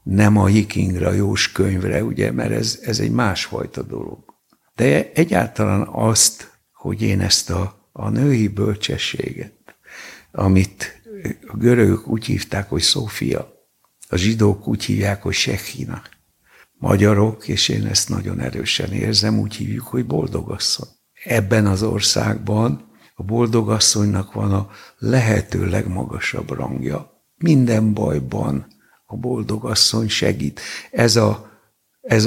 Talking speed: 125 wpm